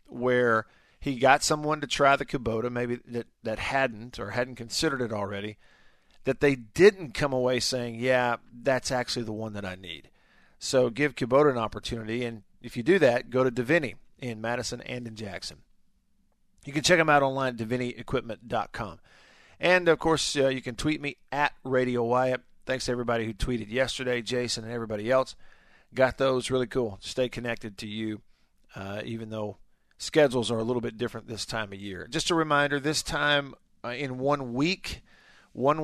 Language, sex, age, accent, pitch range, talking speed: English, male, 50-69, American, 115-135 Hz, 185 wpm